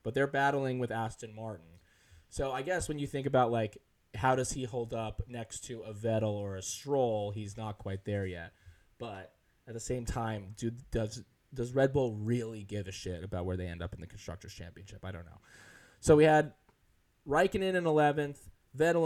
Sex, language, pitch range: male, English, 105-145 Hz